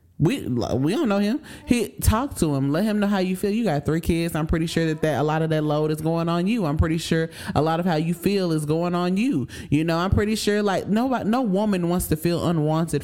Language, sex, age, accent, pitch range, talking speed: English, male, 20-39, American, 145-175 Hz, 270 wpm